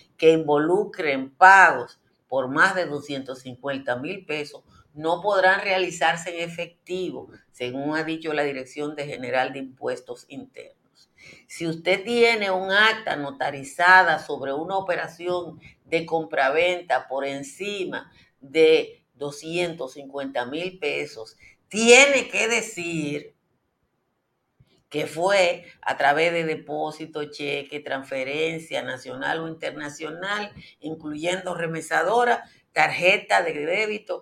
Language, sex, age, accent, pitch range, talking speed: Spanish, female, 50-69, American, 145-195 Hz, 105 wpm